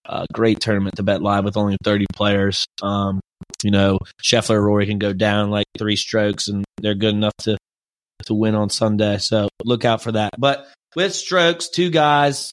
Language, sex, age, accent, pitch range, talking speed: English, male, 30-49, American, 105-125 Hz, 190 wpm